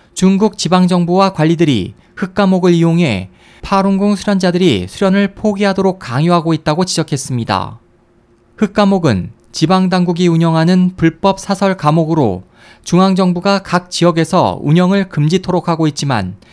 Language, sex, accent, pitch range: Korean, male, native, 150-190 Hz